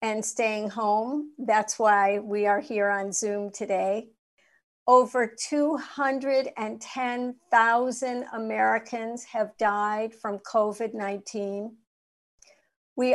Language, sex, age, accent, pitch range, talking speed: English, female, 50-69, American, 215-245 Hz, 85 wpm